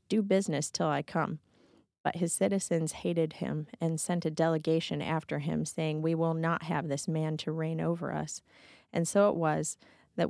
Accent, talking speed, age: American, 185 wpm, 30-49